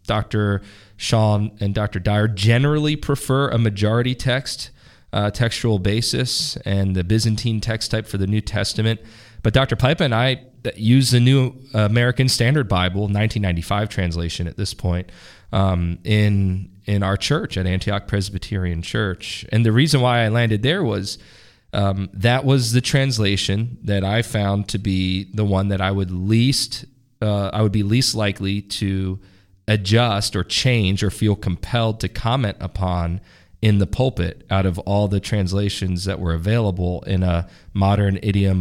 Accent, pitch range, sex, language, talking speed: American, 95-110 Hz, male, English, 160 wpm